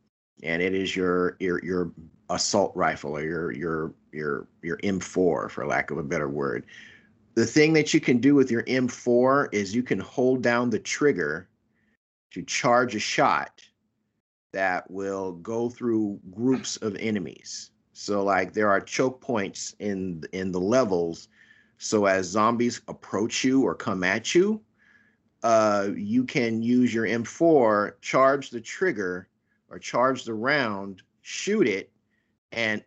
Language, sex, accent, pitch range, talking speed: English, male, American, 100-125 Hz, 150 wpm